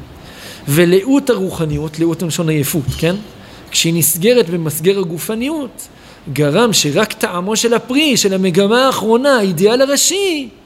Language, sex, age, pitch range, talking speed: Hebrew, male, 50-69, 165-220 Hz, 115 wpm